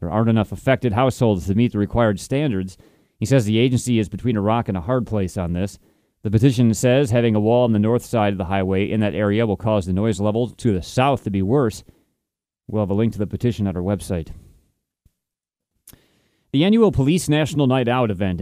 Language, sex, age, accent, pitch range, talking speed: English, male, 30-49, American, 105-125 Hz, 220 wpm